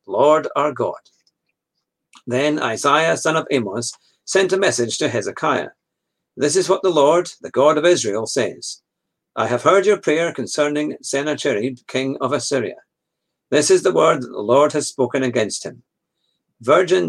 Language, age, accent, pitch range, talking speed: English, 50-69, British, 130-170 Hz, 160 wpm